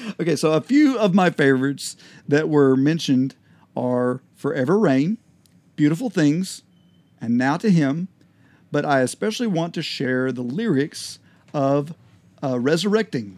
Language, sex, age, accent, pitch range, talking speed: English, male, 50-69, American, 130-170 Hz, 135 wpm